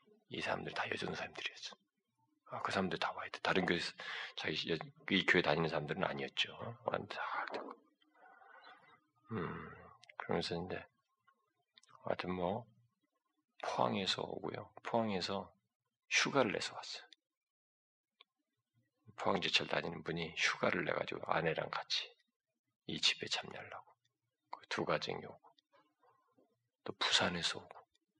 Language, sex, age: Korean, male, 40-59